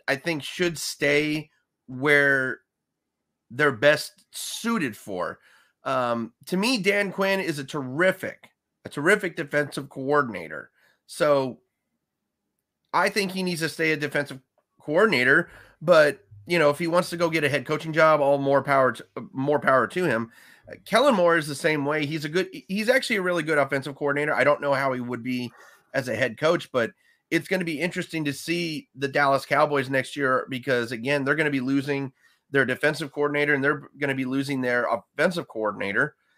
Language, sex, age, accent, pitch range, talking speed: English, male, 30-49, American, 135-175 Hz, 185 wpm